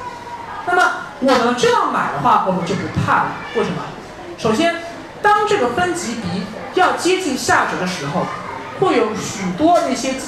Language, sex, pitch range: Chinese, male, 225-355 Hz